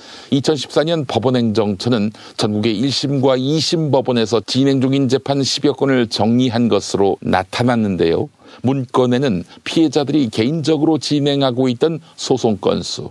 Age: 50-69